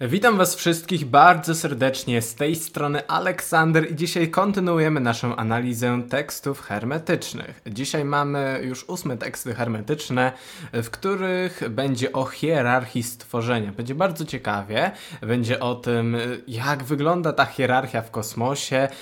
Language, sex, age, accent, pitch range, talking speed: Polish, male, 20-39, native, 120-155 Hz, 125 wpm